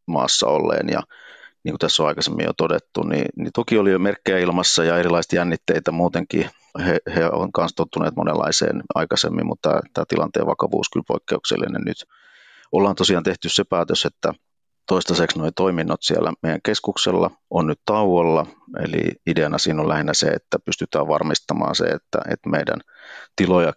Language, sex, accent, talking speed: Finnish, male, native, 160 wpm